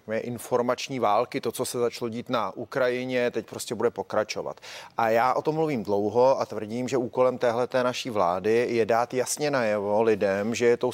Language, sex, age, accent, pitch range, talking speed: Czech, male, 30-49, native, 125-150 Hz, 180 wpm